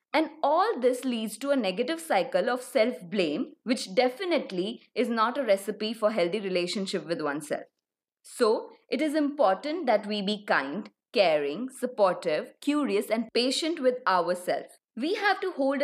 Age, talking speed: 20-39, 150 wpm